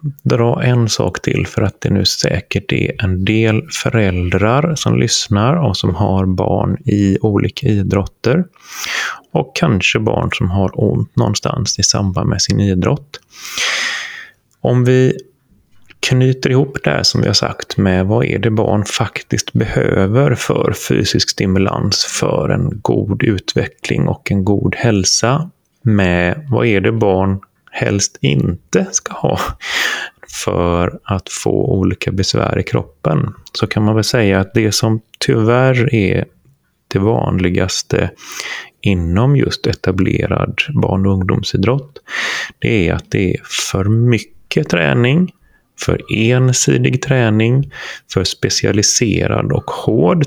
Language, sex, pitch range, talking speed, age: Swedish, male, 95-125 Hz, 130 wpm, 30-49